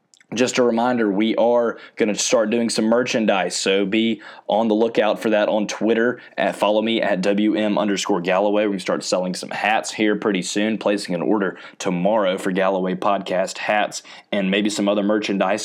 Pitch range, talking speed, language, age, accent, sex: 100-115 Hz, 180 wpm, English, 20-39, American, male